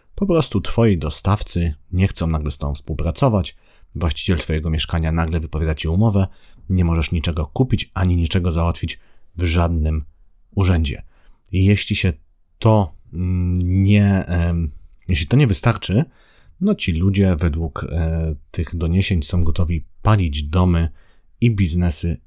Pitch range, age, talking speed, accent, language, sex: 80-100 Hz, 40-59, 125 wpm, native, Polish, male